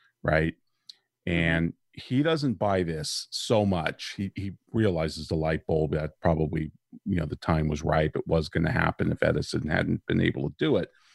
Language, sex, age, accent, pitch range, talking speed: English, male, 50-69, American, 80-100 Hz, 190 wpm